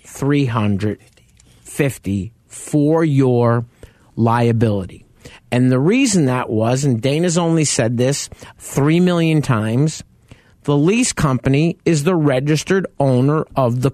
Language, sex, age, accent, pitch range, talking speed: English, male, 50-69, American, 110-145 Hz, 110 wpm